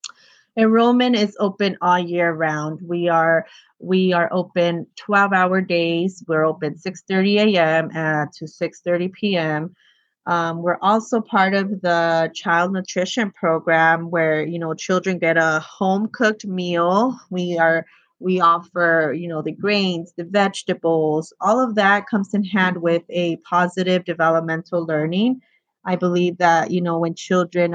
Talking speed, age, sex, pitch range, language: 150 wpm, 30-49, female, 165-190 Hz, English